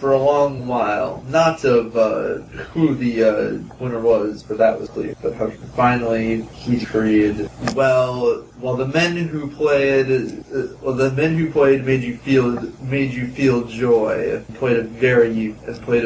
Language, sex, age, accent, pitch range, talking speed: English, male, 20-39, American, 115-130 Hz, 170 wpm